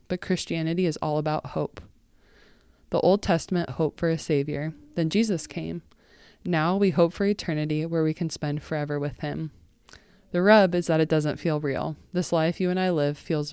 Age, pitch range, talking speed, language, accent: 20-39, 150-180 Hz, 190 wpm, English, American